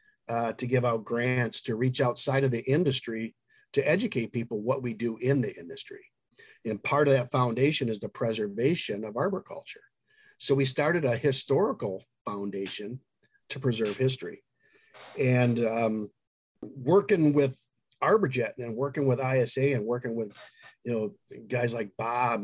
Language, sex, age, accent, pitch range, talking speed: English, male, 50-69, American, 115-140 Hz, 150 wpm